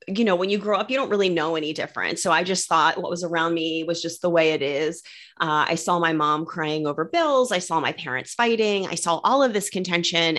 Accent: American